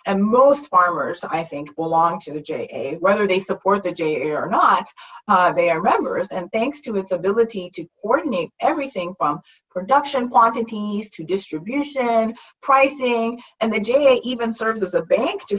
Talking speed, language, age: 165 wpm, English, 30-49